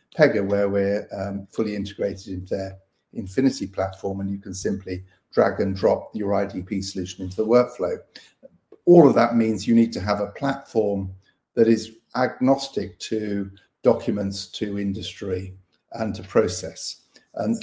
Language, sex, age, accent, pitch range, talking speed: English, male, 50-69, British, 95-115 Hz, 150 wpm